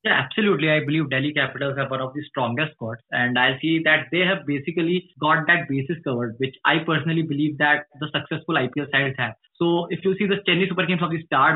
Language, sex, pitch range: English, male, 155-180 Hz